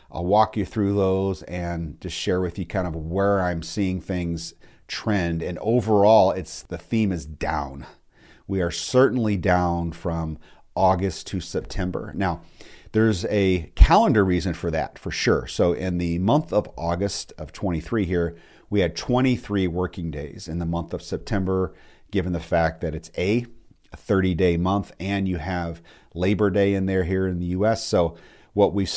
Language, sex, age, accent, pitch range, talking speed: English, male, 40-59, American, 85-105 Hz, 170 wpm